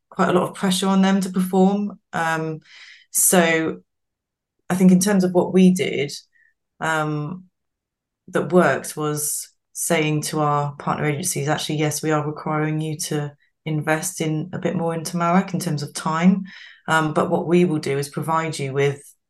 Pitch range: 150-180 Hz